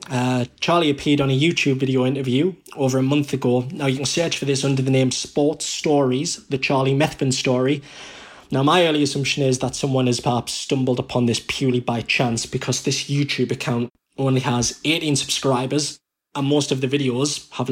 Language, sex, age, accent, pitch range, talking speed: English, male, 20-39, British, 125-145 Hz, 190 wpm